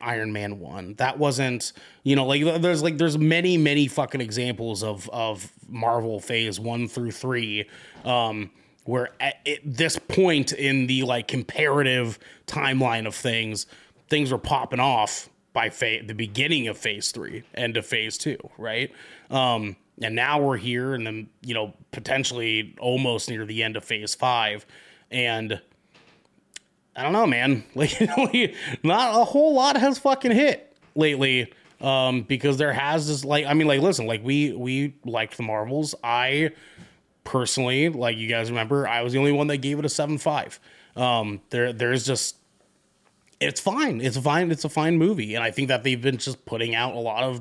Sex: male